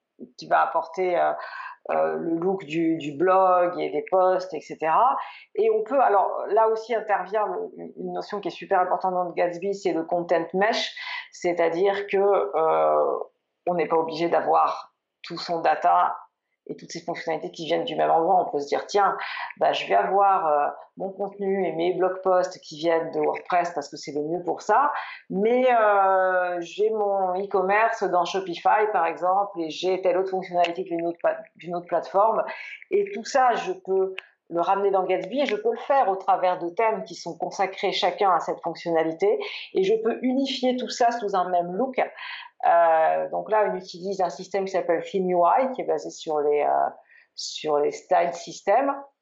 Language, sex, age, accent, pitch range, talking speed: French, female, 40-59, French, 170-220 Hz, 190 wpm